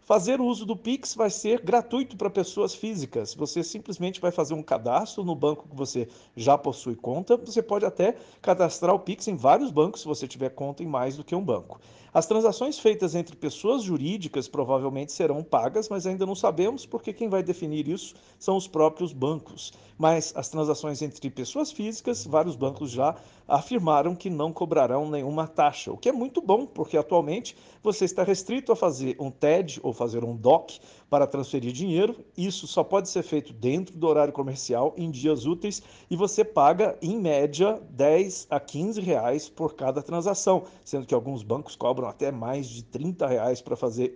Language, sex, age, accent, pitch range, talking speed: Portuguese, male, 50-69, Brazilian, 145-200 Hz, 185 wpm